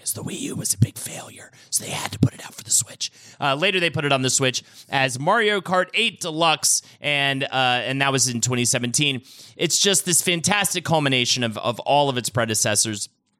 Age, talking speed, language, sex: 30-49, 215 wpm, English, male